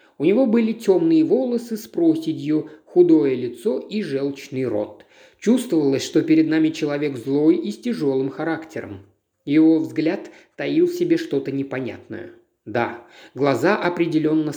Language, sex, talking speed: Russian, male, 130 wpm